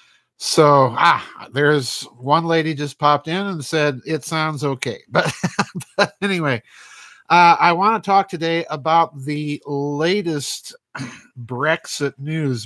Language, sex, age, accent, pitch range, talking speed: English, male, 50-69, American, 130-165 Hz, 130 wpm